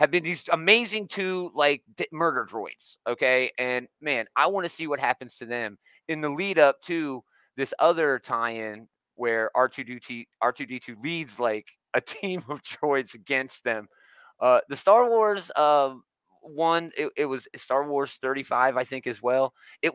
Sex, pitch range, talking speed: male, 125-160 Hz, 160 wpm